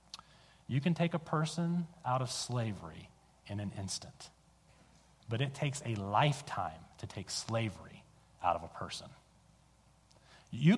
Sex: male